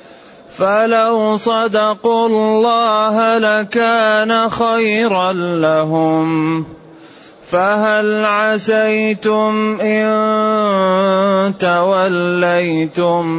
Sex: male